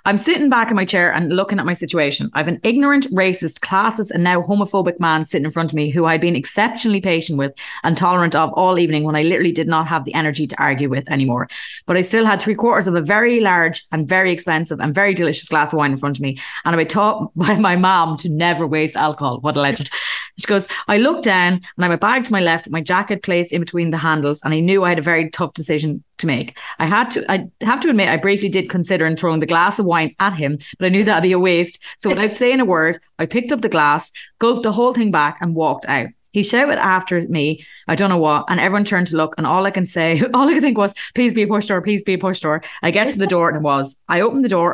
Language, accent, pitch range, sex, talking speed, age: English, Irish, 155-200 Hz, female, 280 wpm, 30-49